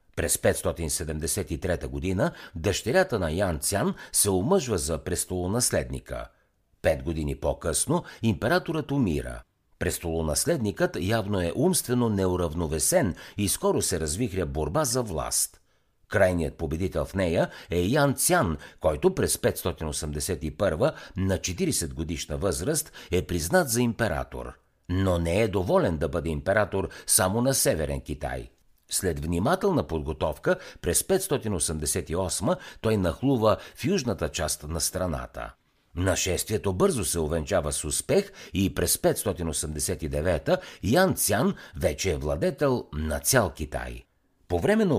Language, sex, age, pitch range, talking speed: Bulgarian, male, 60-79, 80-115 Hz, 120 wpm